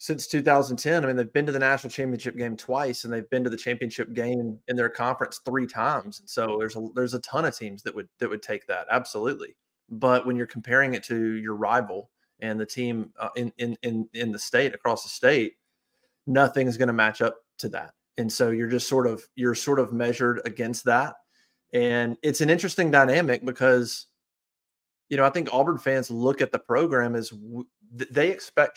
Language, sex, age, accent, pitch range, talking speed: English, male, 30-49, American, 120-145 Hz, 210 wpm